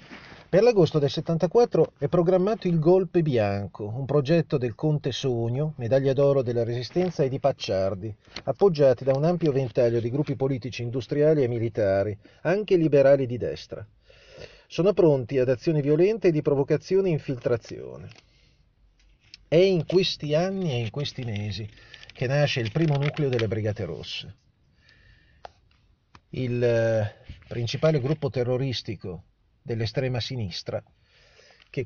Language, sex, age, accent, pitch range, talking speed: Italian, male, 40-59, native, 115-155 Hz, 130 wpm